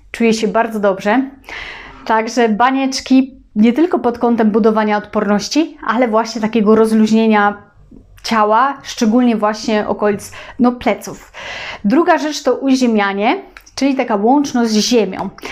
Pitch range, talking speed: 215-255 Hz, 120 wpm